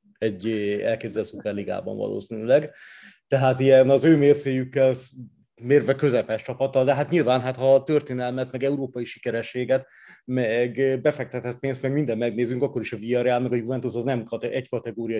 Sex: male